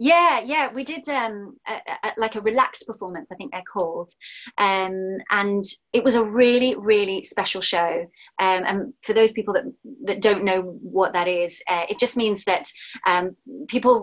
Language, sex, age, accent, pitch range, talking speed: English, female, 30-49, British, 190-235 Hz, 175 wpm